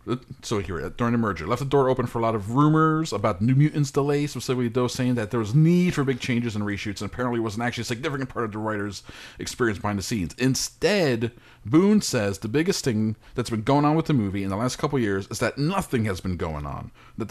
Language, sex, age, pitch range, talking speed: English, male, 30-49, 105-135 Hz, 245 wpm